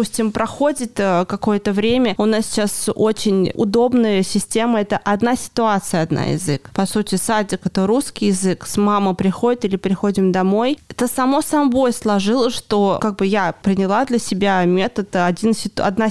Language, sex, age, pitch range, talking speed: Russian, female, 20-39, 200-240 Hz, 145 wpm